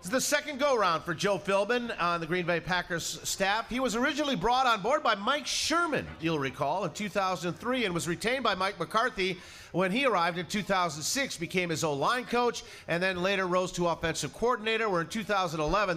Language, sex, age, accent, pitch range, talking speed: English, male, 40-59, American, 140-185 Hz, 200 wpm